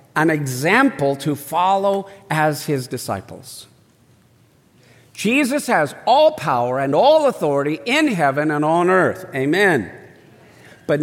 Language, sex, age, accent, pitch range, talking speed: English, male, 50-69, American, 140-205 Hz, 115 wpm